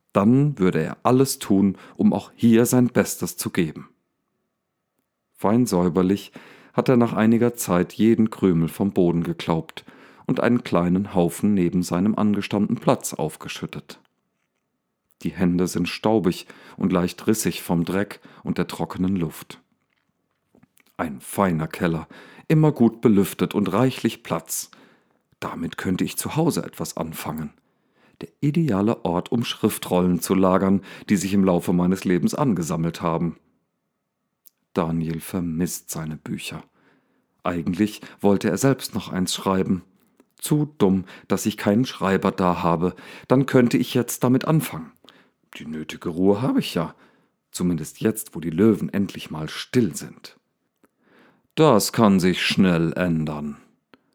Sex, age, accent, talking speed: male, 40-59, German, 135 wpm